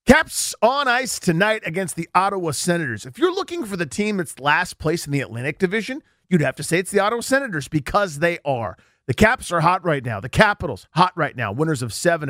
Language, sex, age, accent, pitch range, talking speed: English, male, 40-59, American, 140-200 Hz, 225 wpm